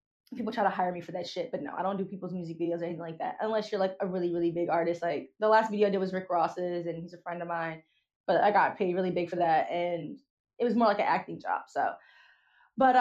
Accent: American